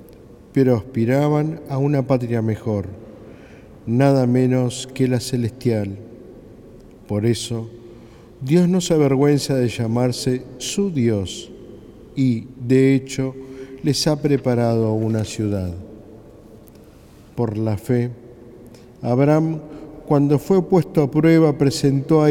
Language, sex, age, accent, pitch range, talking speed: Spanish, male, 50-69, Argentinian, 115-140 Hz, 110 wpm